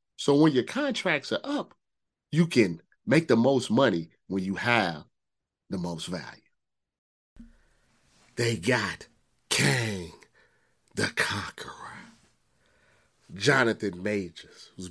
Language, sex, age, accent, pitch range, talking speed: English, male, 30-49, American, 105-130 Hz, 105 wpm